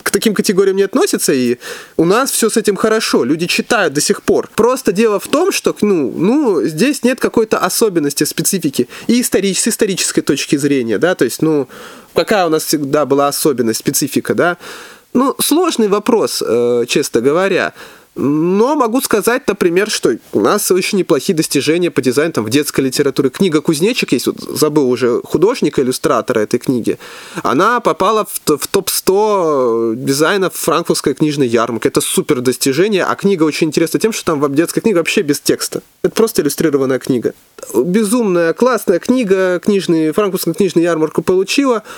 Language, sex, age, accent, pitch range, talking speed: Russian, male, 20-39, native, 150-230 Hz, 160 wpm